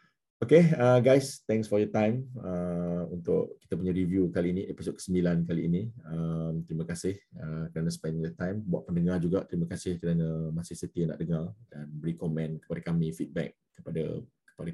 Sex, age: male, 20-39